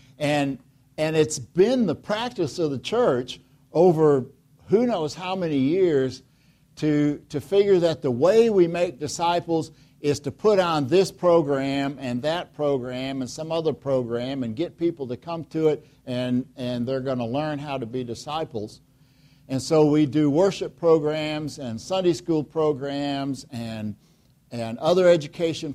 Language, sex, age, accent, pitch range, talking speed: English, male, 60-79, American, 130-155 Hz, 160 wpm